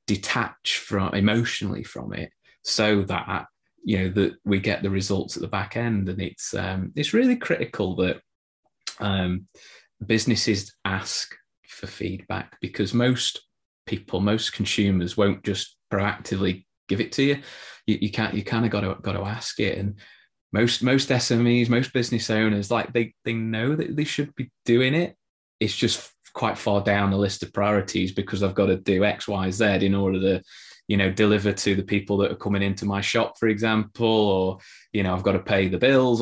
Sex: male